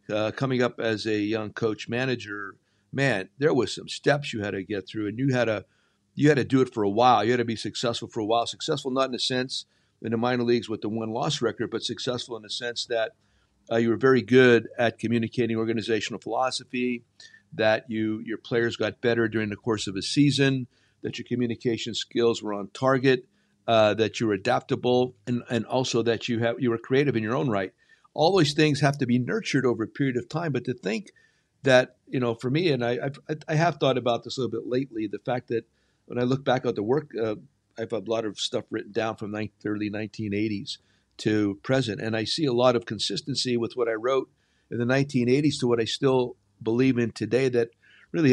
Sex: male